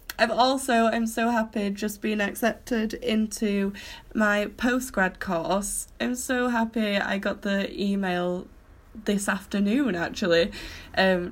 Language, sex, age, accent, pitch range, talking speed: English, female, 10-29, British, 175-225 Hz, 120 wpm